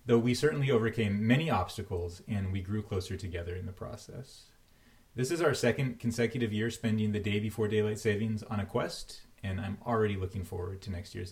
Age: 30-49